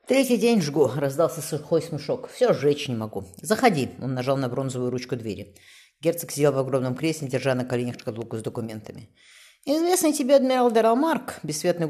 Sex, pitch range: female, 130-215 Hz